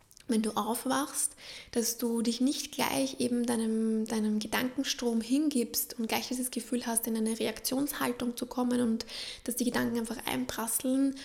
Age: 20-39